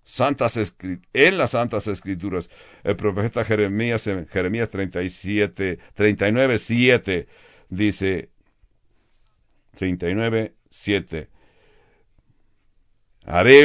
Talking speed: 70 wpm